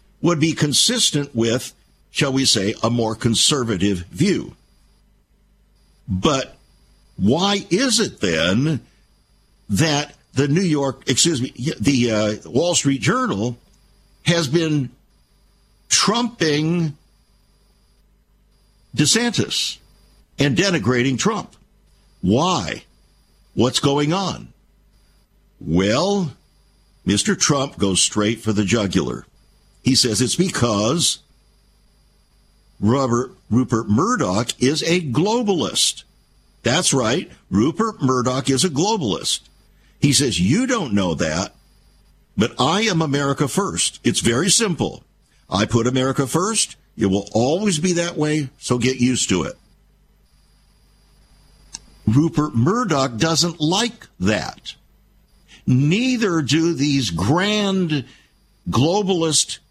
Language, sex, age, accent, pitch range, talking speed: English, male, 60-79, American, 115-165 Hz, 105 wpm